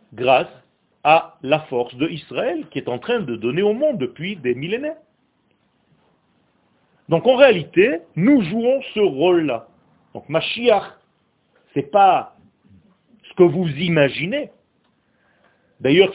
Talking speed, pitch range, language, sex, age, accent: 125 wpm, 155-225 Hz, French, male, 40-59, French